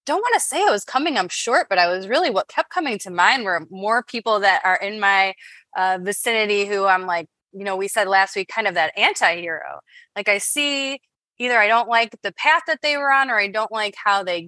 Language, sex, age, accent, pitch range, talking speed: English, female, 20-39, American, 185-245 Hz, 245 wpm